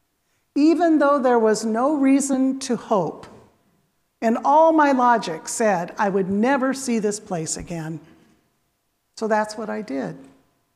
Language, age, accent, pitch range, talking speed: English, 50-69, American, 175-260 Hz, 140 wpm